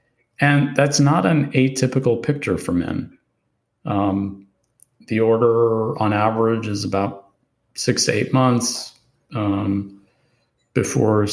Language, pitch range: English, 95-120 Hz